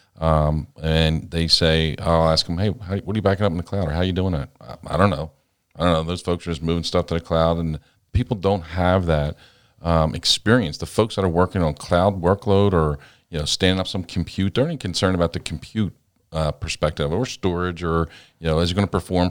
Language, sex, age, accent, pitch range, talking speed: English, male, 40-59, American, 80-95 Hz, 245 wpm